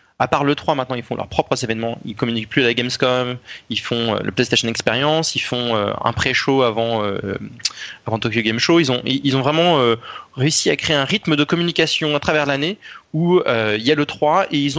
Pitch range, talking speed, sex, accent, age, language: 115-150 Hz, 230 wpm, male, French, 20-39, French